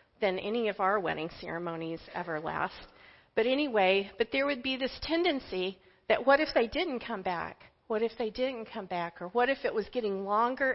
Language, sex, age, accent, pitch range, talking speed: English, female, 40-59, American, 200-245 Hz, 200 wpm